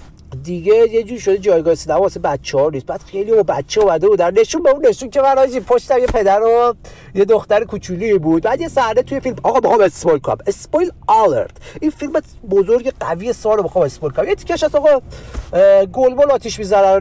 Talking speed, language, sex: 210 wpm, Persian, male